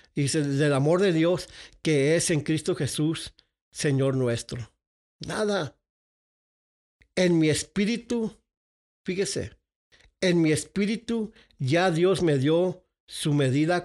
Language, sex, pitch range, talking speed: English, male, 150-200 Hz, 115 wpm